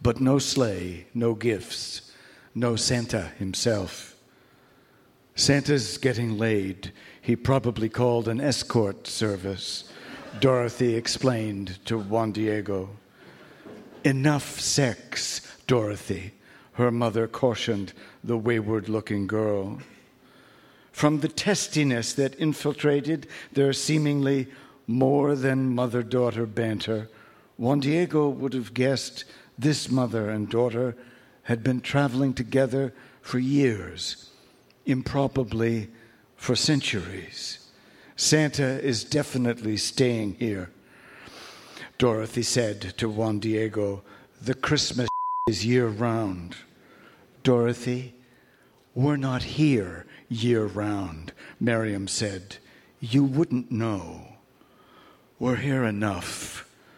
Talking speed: 90 wpm